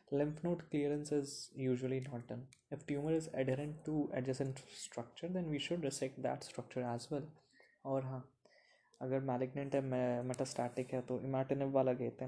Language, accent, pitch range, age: Hindi, native, 130-145 Hz, 20-39